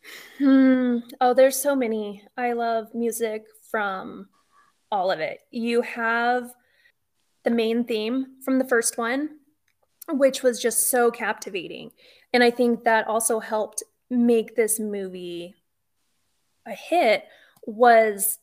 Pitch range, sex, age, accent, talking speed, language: 215-255 Hz, female, 20-39, American, 125 wpm, English